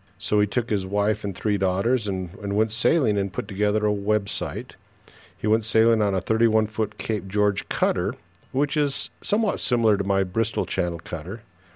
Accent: American